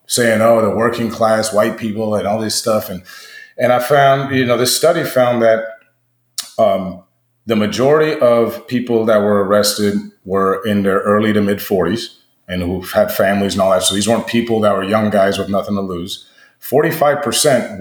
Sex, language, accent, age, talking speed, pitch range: male, English, American, 30-49, 190 wpm, 105-125 Hz